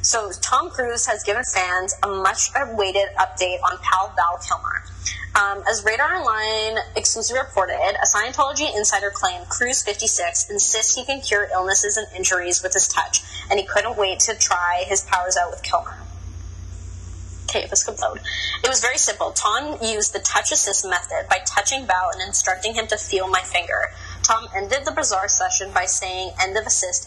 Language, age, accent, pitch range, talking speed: English, 20-39, American, 175-215 Hz, 175 wpm